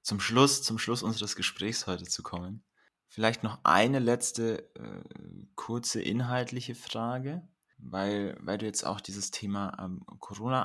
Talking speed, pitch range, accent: 145 wpm, 95-120 Hz, German